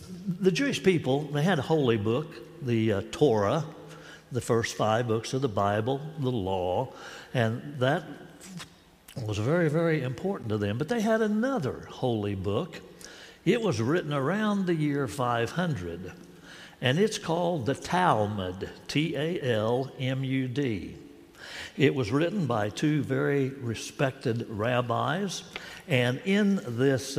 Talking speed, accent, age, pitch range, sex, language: 130 wpm, American, 60-79, 115-165 Hz, male, English